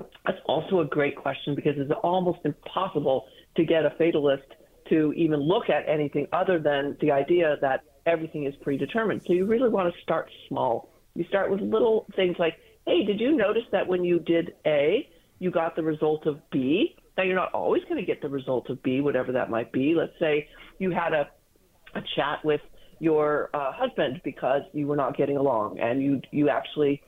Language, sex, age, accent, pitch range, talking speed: English, female, 50-69, American, 145-180 Hz, 200 wpm